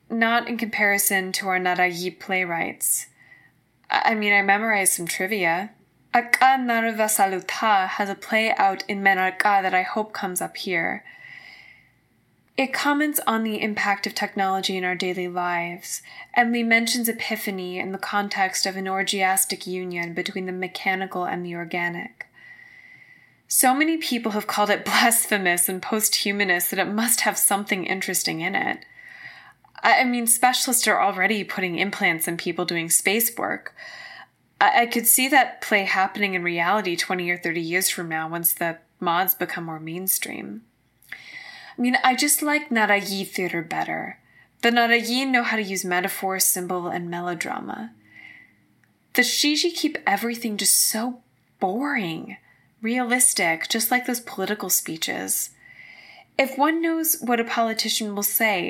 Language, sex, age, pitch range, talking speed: English, female, 10-29, 185-245 Hz, 145 wpm